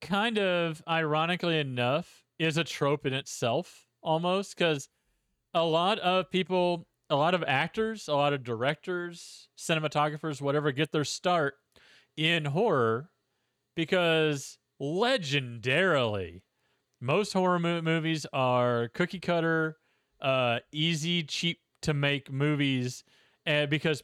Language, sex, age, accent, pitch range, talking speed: English, male, 30-49, American, 130-170 Hz, 115 wpm